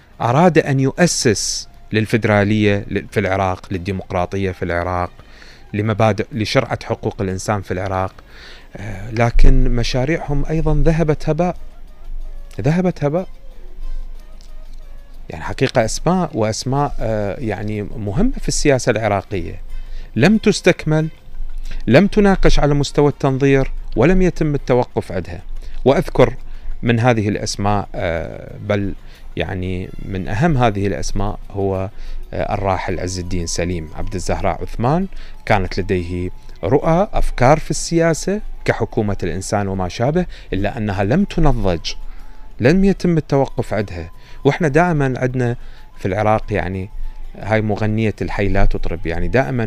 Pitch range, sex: 95-140 Hz, male